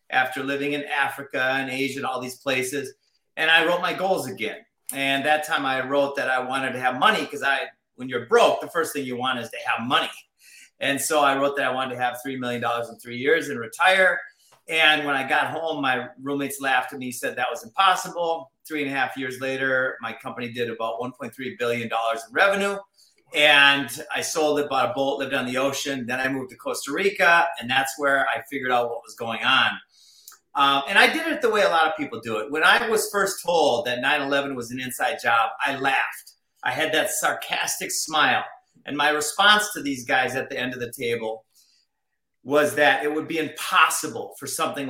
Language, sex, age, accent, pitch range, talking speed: English, male, 40-59, American, 130-160 Hz, 220 wpm